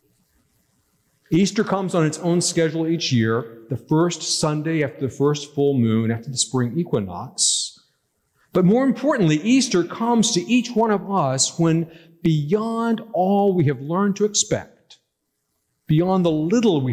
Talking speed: 150 wpm